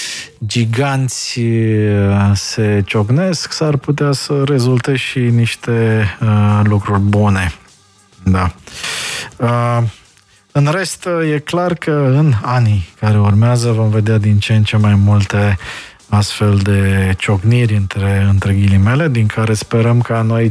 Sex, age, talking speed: male, 20-39, 115 wpm